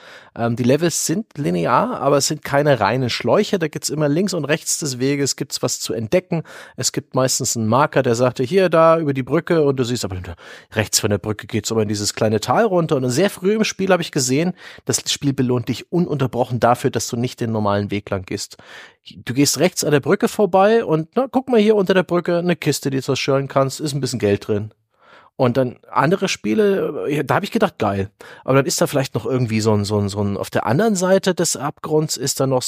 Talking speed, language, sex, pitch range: 235 wpm, German, male, 115-170 Hz